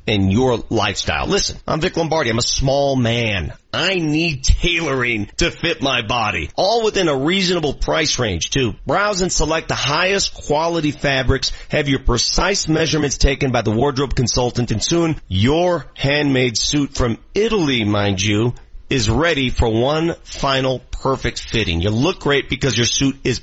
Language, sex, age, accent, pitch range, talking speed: English, male, 40-59, American, 120-170 Hz, 165 wpm